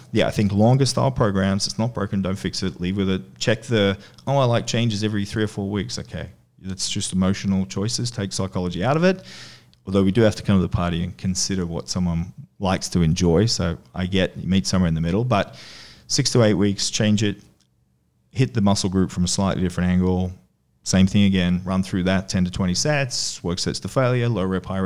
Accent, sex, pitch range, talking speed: Australian, male, 90-110 Hz, 225 wpm